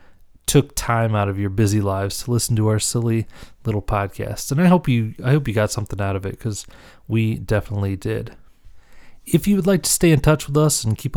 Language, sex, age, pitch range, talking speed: English, male, 30-49, 105-125 Hz, 225 wpm